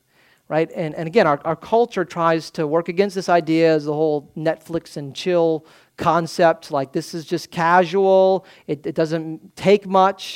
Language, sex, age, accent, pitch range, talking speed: English, male, 40-59, American, 155-200 Hz, 175 wpm